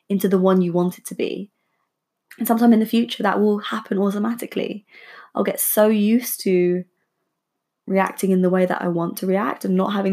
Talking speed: 200 wpm